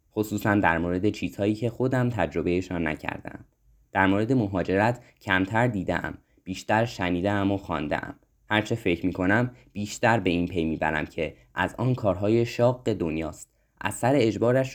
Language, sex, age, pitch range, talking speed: Persian, male, 20-39, 90-115 Hz, 150 wpm